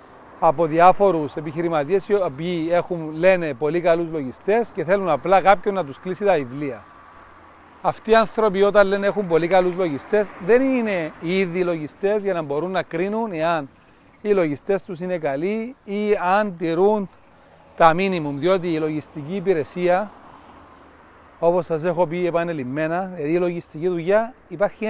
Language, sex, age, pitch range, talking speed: Greek, male, 40-59, 160-195 Hz, 150 wpm